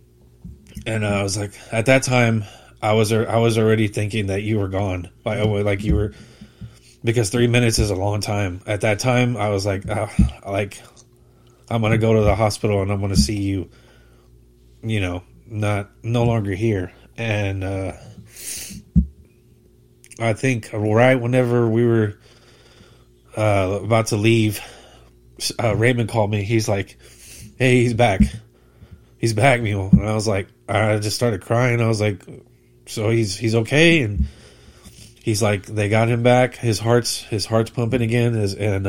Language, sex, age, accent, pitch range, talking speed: English, male, 30-49, American, 100-115 Hz, 165 wpm